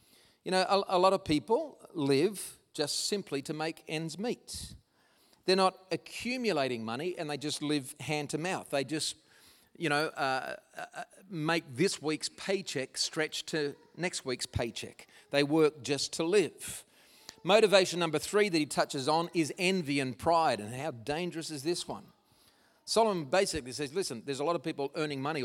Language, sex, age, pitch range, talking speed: English, male, 40-59, 145-190 Hz, 170 wpm